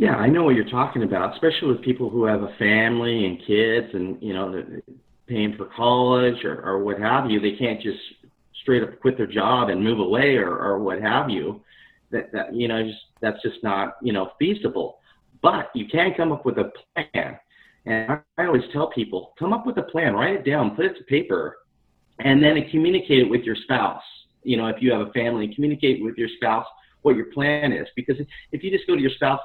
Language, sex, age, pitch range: English, male, 40-59, 110-145 Hz